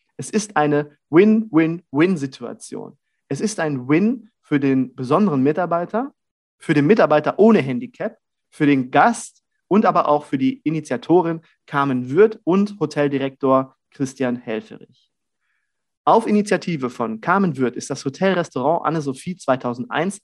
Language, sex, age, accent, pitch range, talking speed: German, male, 30-49, German, 135-185 Hz, 125 wpm